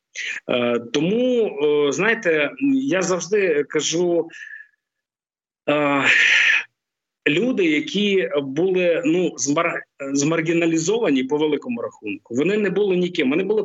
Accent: native